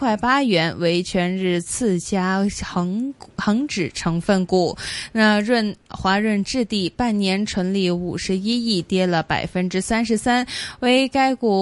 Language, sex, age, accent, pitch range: Chinese, female, 20-39, native, 180-235 Hz